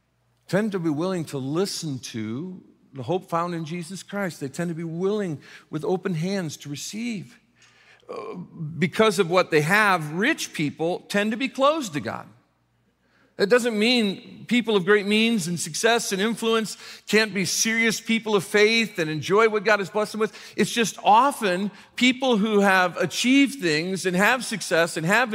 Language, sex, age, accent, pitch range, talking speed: English, male, 50-69, American, 170-215 Hz, 175 wpm